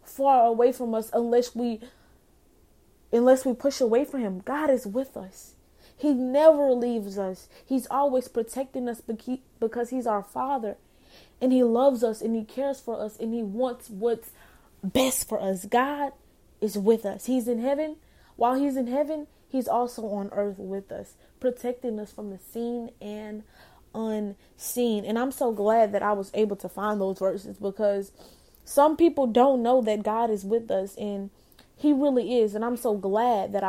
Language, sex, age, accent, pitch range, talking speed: English, female, 20-39, American, 215-260 Hz, 180 wpm